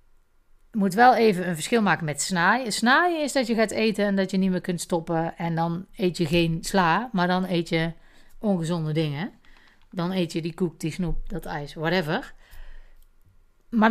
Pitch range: 155-200 Hz